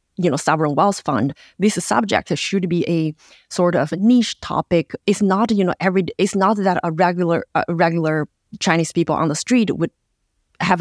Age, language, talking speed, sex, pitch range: 30-49, English, 190 wpm, female, 160-220 Hz